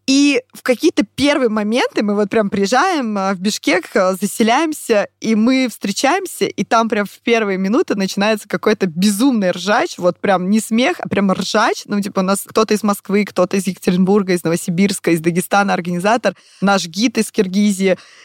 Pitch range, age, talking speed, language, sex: 185-235 Hz, 20-39, 170 wpm, Russian, female